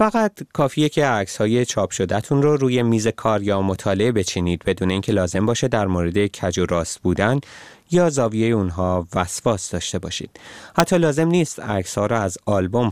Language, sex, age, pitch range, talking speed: Persian, male, 30-49, 95-140 Hz, 175 wpm